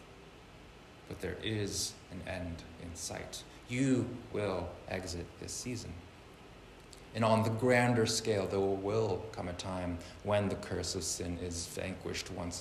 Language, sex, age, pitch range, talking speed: English, male, 20-39, 85-105 Hz, 145 wpm